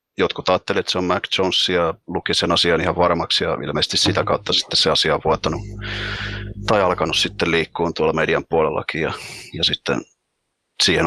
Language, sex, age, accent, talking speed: Finnish, male, 30-49, native, 175 wpm